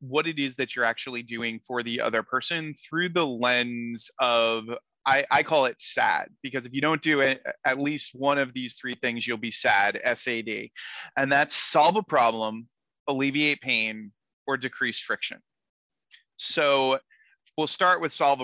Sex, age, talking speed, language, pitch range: male, 30-49, 170 wpm, English, 125-155 Hz